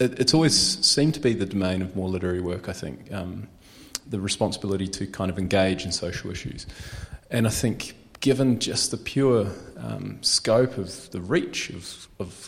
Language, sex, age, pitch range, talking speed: English, male, 30-49, 95-115 Hz, 180 wpm